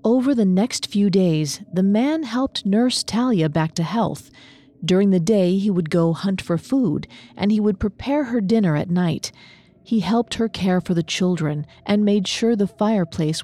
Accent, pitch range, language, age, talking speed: American, 165-220 Hz, English, 40-59, 190 wpm